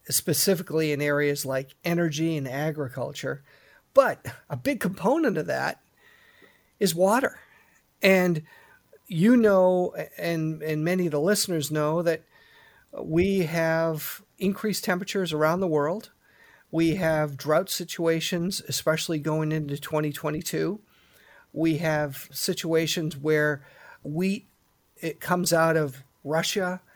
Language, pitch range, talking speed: English, 150-180 Hz, 115 wpm